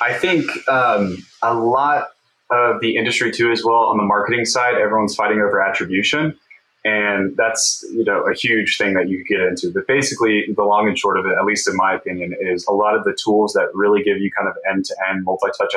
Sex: male